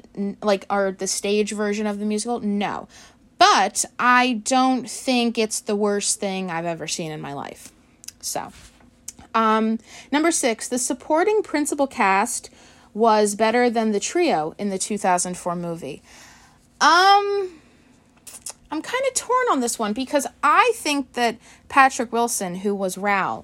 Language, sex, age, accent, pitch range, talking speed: English, female, 30-49, American, 195-250 Hz, 145 wpm